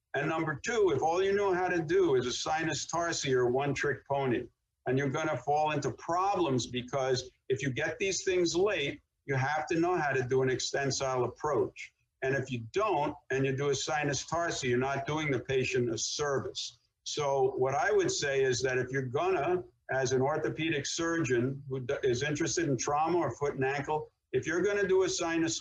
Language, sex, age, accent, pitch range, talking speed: English, male, 60-79, American, 130-165 Hz, 205 wpm